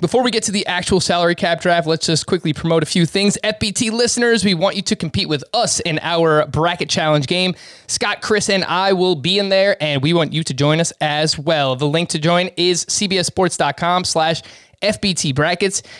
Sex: male